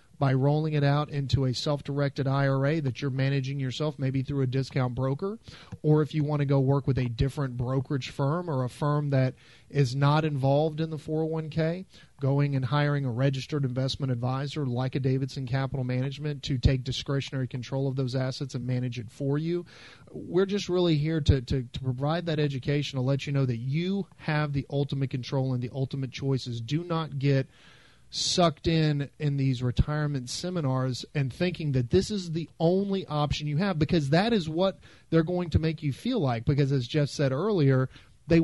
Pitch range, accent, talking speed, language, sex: 130-155 Hz, American, 190 wpm, English, male